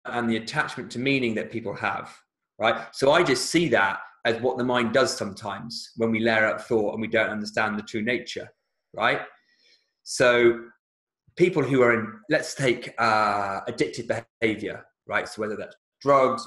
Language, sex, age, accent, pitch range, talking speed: English, male, 30-49, British, 115-150 Hz, 175 wpm